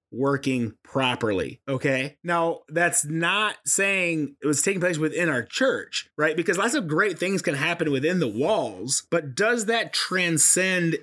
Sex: male